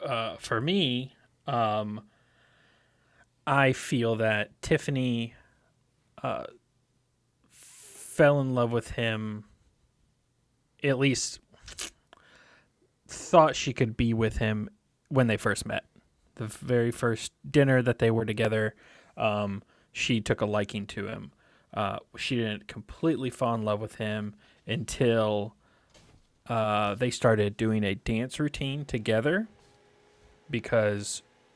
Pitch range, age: 105-125 Hz, 20-39